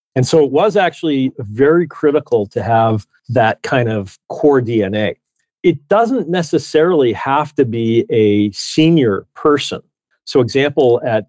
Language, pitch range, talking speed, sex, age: English, 100-130 Hz, 140 wpm, male, 40-59